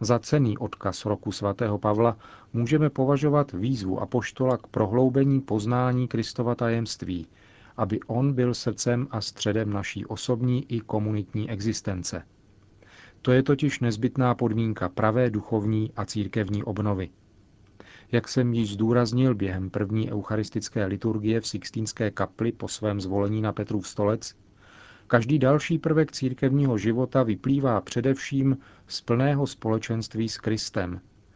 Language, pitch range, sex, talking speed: Czech, 105-125 Hz, male, 125 wpm